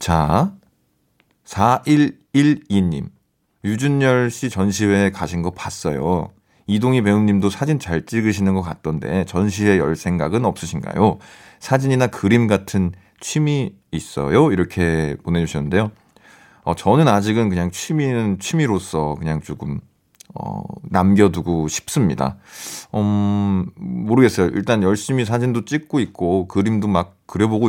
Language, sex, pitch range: Korean, male, 90-120 Hz